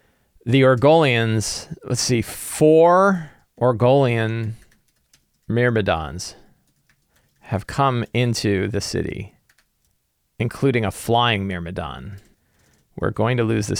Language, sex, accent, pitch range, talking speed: English, male, American, 105-135 Hz, 90 wpm